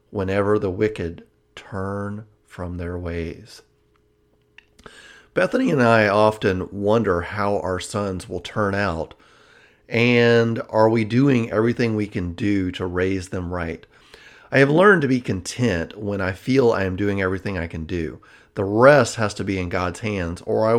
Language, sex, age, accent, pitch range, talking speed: English, male, 40-59, American, 95-125 Hz, 160 wpm